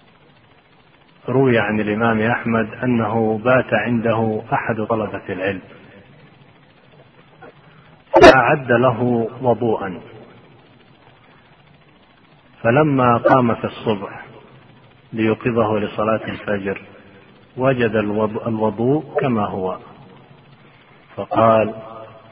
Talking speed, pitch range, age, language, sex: 65 wpm, 105-120 Hz, 40-59, Arabic, male